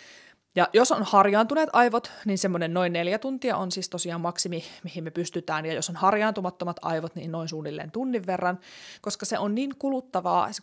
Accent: native